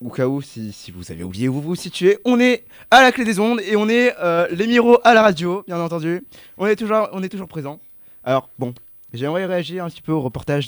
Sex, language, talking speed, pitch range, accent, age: male, French, 260 wpm, 140-200 Hz, French, 20-39